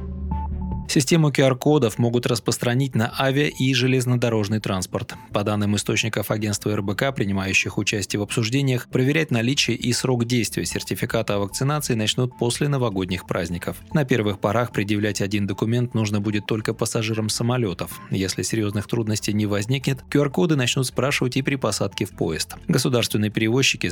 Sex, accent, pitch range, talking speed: male, native, 105-125 Hz, 140 wpm